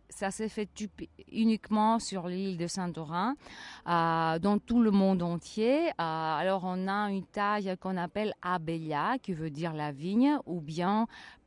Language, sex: French, female